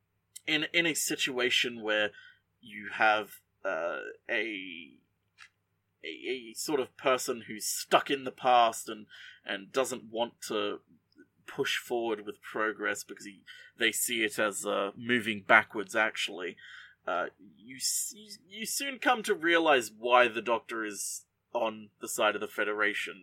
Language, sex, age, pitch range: English, male, 30-49, 105-170 Hz